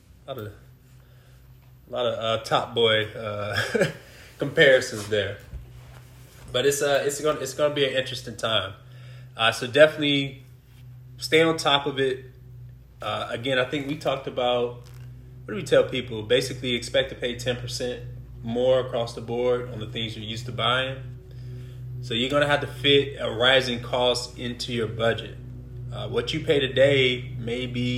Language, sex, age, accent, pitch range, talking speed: English, male, 20-39, American, 120-130 Hz, 165 wpm